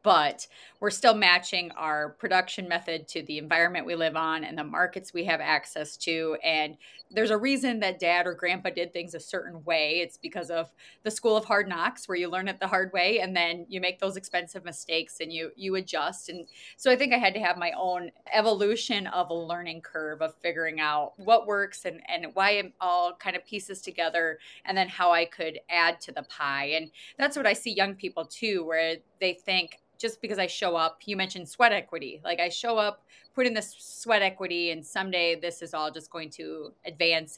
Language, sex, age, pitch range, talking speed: English, female, 30-49, 165-195 Hz, 215 wpm